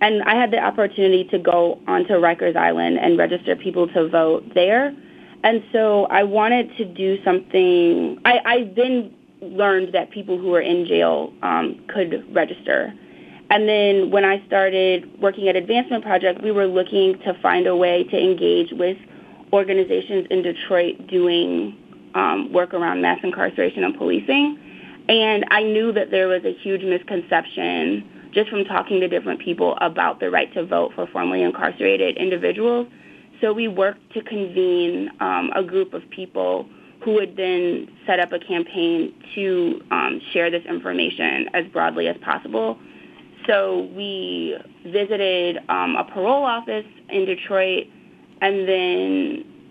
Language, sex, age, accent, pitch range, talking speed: English, female, 20-39, American, 180-240 Hz, 155 wpm